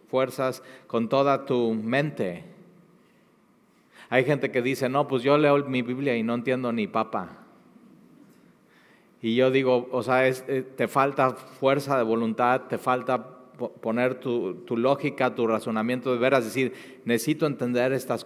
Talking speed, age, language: 155 wpm, 40-59, Spanish